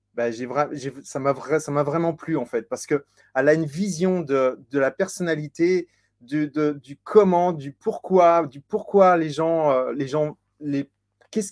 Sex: male